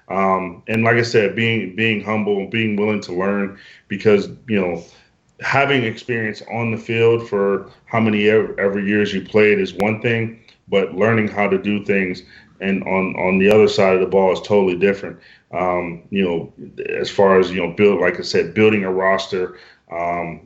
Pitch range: 90-110 Hz